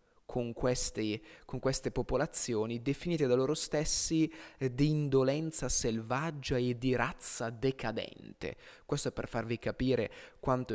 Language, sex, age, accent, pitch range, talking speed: Italian, male, 20-39, native, 115-150 Hz, 115 wpm